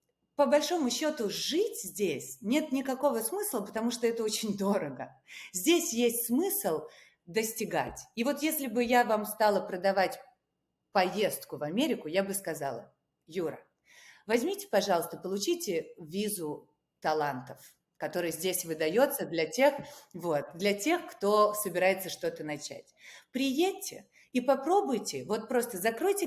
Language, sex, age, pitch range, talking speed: Ukrainian, female, 30-49, 170-270 Hz, 125 wpm